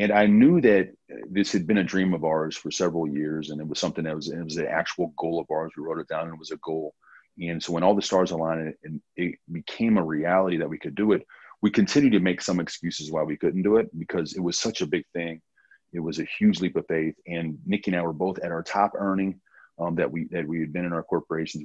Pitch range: 80-100 Hz